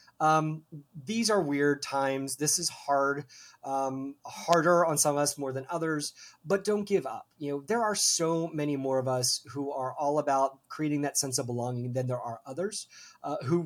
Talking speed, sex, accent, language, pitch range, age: 195 wpm, male, American, English, 135-175 Hz, 30-49